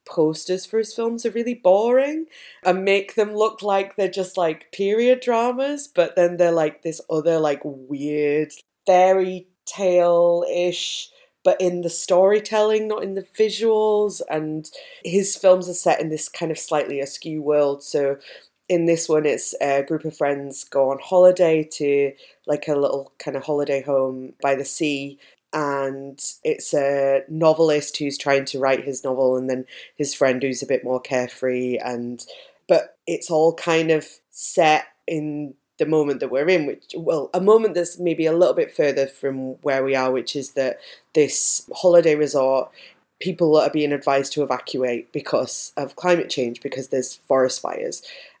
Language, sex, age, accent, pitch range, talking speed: English, female, 20-39, British, 140-185 Hz, 170 wpm